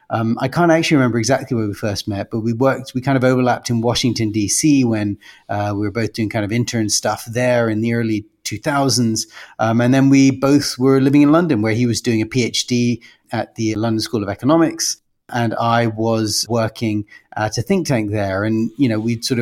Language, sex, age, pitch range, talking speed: English, male, 30-49, 110-130 Hz, 215 wpm